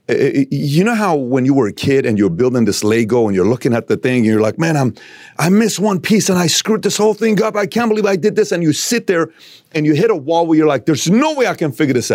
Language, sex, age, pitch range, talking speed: English, male, 40-59, 125-200 Hz, 290 wpm